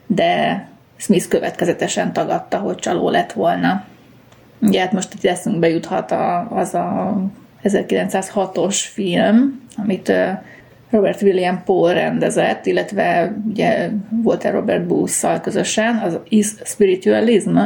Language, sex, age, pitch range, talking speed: Hungarian, female, 30-49, 185-220 Hz, 110 wpm